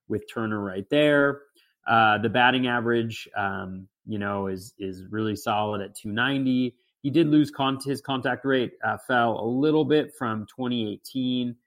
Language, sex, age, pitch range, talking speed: English, male, 30-49, 100-130 Hz, 160 wpm